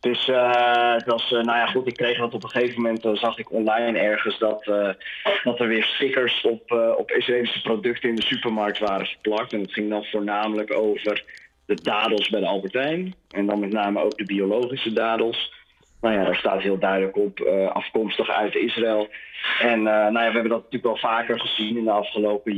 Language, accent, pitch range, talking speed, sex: Dutch, Dutch, 105-115 Hz, 210 wpm, male